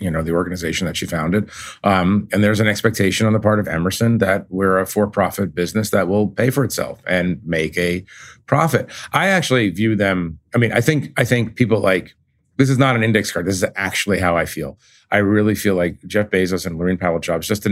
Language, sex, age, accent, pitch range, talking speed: English, male, 40-59, American, 90-110 Hz, 225 wpm